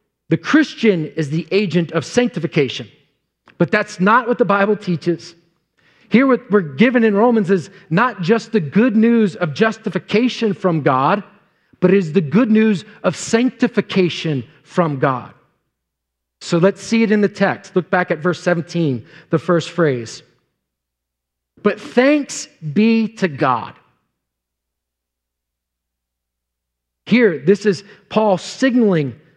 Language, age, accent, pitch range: English, 40-59, American, 140-205 Hz